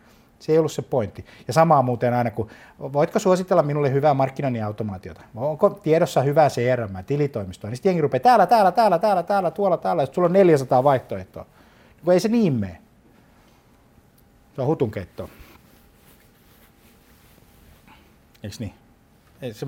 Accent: native